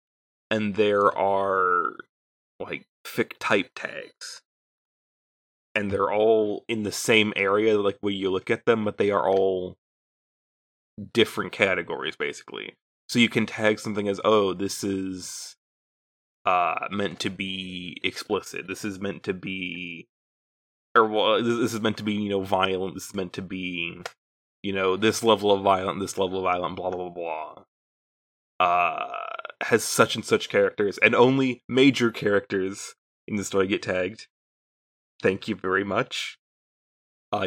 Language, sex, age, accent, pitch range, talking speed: English, male, 20-39, American, 95-115 Hz, 150 wpm